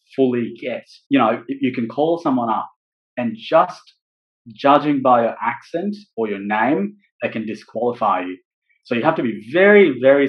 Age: 20-39